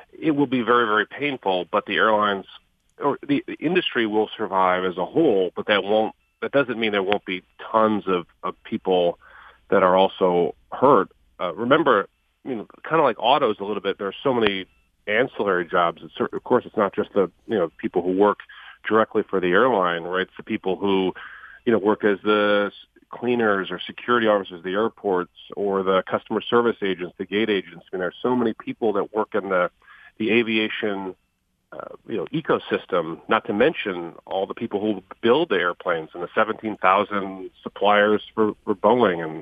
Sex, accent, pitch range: male, American, 95-110 Hz